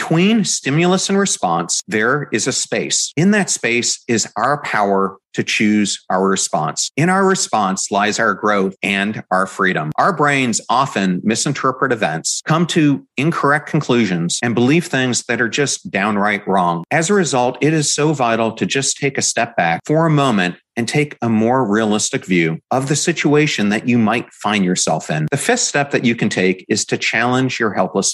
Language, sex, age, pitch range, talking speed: English, male, 40-59, 105-155 Hz, 185 wpm